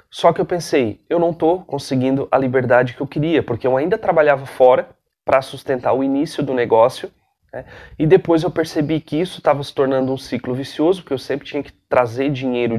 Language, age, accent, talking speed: Portuguese, 30-49, Brazilian, 205 wpm